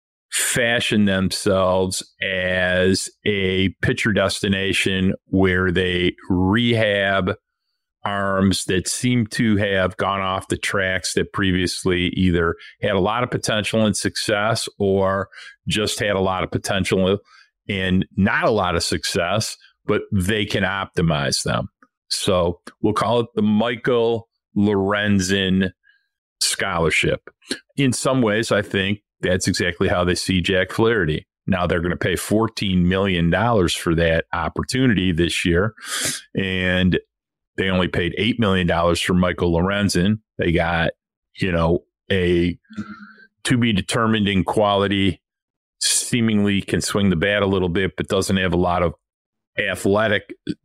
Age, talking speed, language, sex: 40-59, 135 wpm, English, male